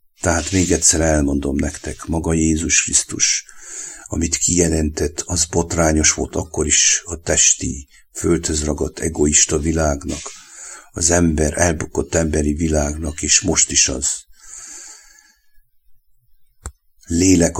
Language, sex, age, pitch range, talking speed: English, male, 60-79, 75-85 Hz, 105 wpm